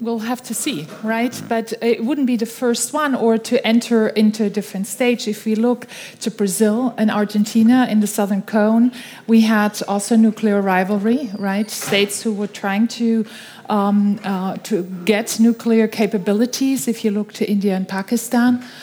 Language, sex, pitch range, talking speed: Dutch, female, 210-235 Hz, 170 wpm